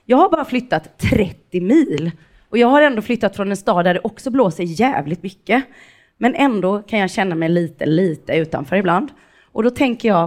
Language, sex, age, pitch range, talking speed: Swedish, female, 30-49, 165-215 Hz, 200 wpm